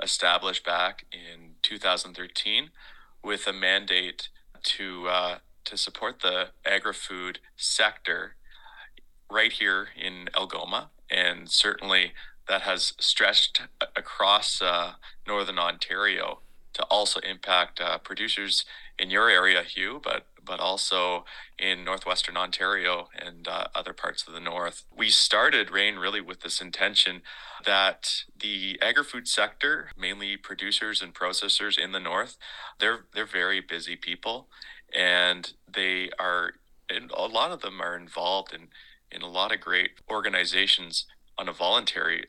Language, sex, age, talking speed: English, male, 30-49, 130 wpm